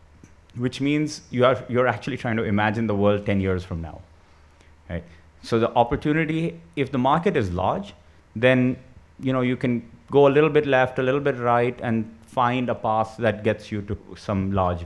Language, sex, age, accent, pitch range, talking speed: English, male, 30-49, Indian, 95-130 Hz, 195 wpm